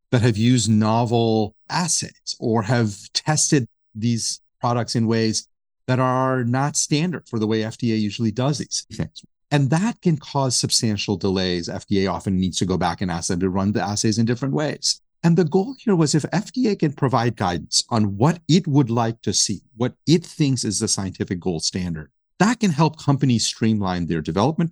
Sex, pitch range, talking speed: male, 95-140 Hz, 190 wpm